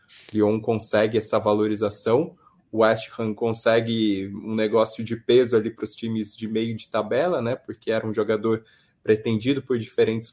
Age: 20-39